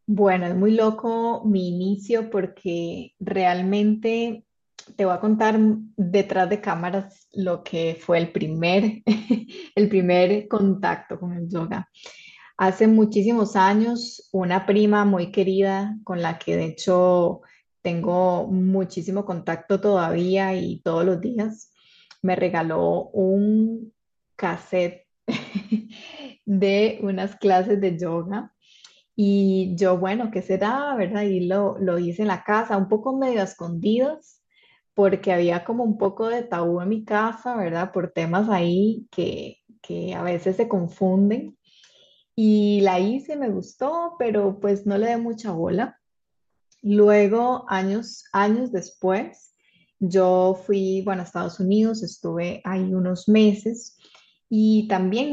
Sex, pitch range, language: female, 185-215 Hz, Spanish